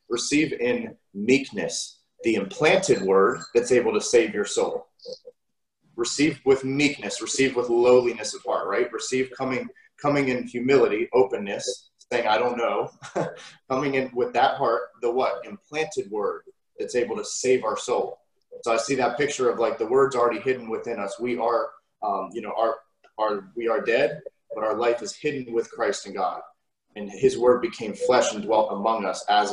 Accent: American